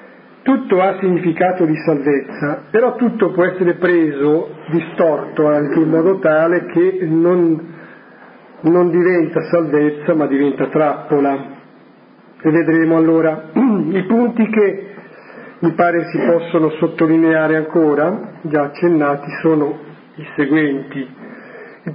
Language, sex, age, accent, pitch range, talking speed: Italian, male, 50-69, native, 150-180 Hz, 110 wpm